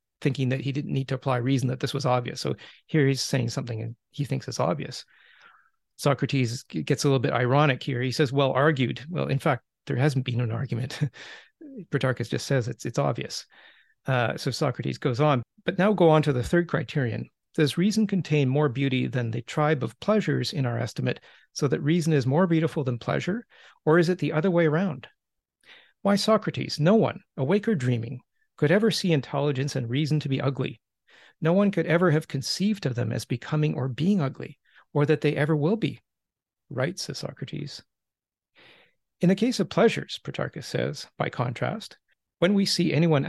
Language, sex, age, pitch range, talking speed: English, male, 40-59, 130-170 Hz, 190 wpm